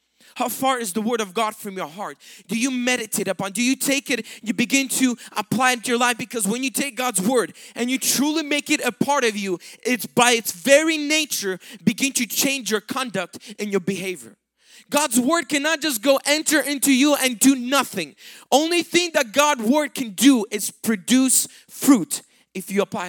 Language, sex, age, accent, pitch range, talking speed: English, male, 20-39, American, 190-260 Hz, 205 wpm